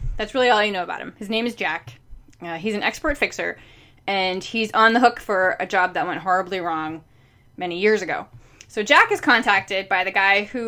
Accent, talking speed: American, 220 wpm